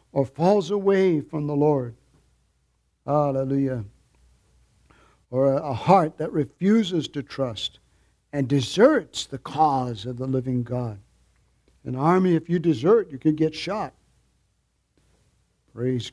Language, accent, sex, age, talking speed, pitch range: English, American, male, 60-79, 125 wpm, 135-180 Hz